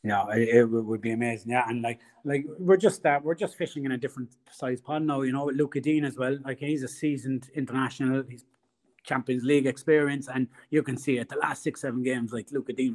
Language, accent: English, Irish